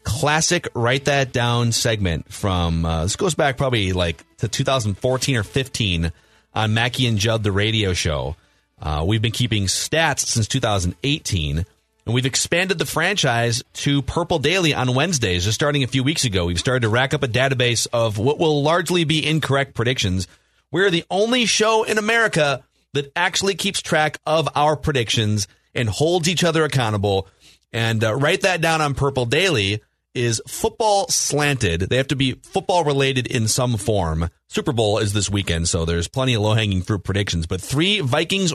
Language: English